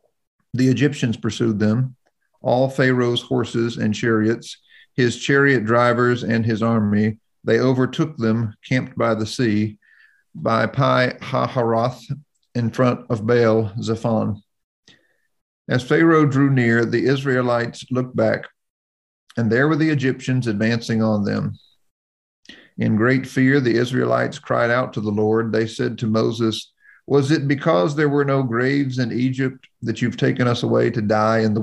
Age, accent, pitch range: 50-69, American, 110-130 Hz